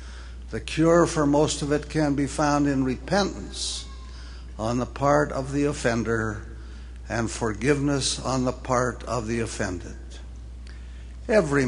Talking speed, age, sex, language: 135 wpm, 60-79, male, English